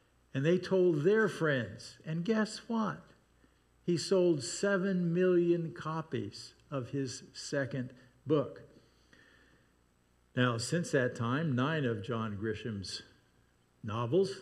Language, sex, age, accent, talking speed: English, male, 50-69, American, 110 wpm